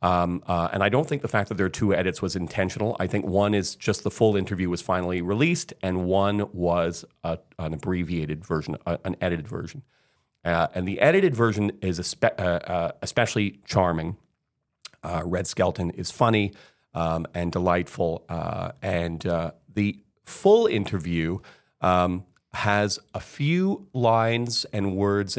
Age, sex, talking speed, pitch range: 40-59, male, 155 wpm, 90-105 Hz